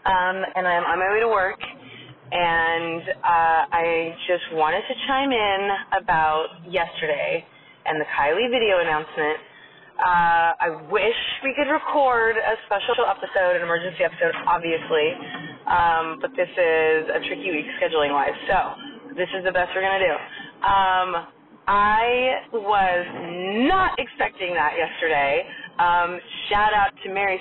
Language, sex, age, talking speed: English, female, 20-39, 140 wpm